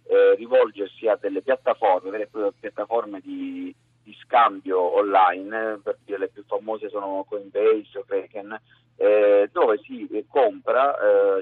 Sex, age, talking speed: male, 40-59, 120 wpm